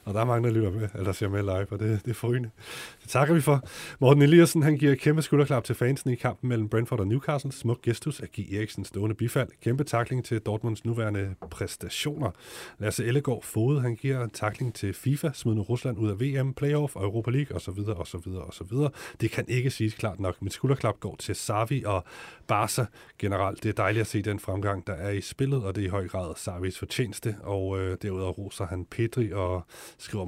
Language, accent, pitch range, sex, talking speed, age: Danish, native, 95-125 Hz, male, 215 wpm, 30-49